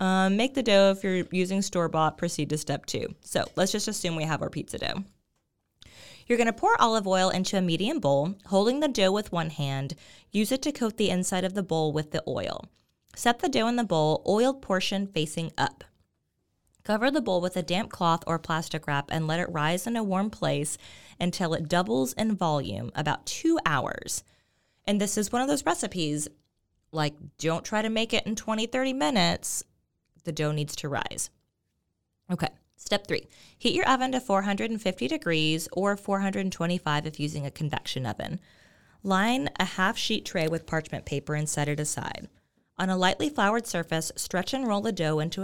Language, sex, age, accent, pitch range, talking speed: English, female, 20-39, American, 155-215 Hz, 195 wpm